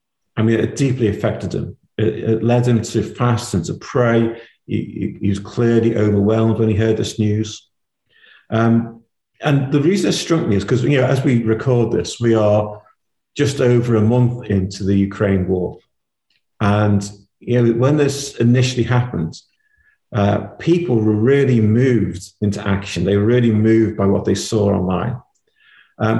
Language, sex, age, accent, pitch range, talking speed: English, male, 50-69, British, 105-125 Hz, 170 wpm